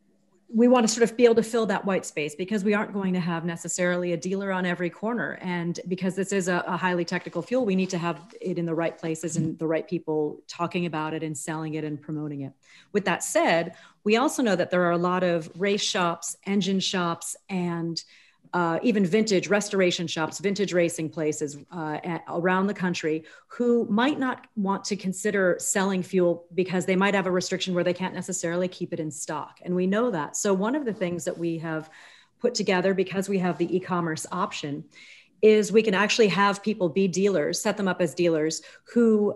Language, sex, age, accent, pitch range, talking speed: English, female, 40-59, American, 170-200 Hz, 215 wpm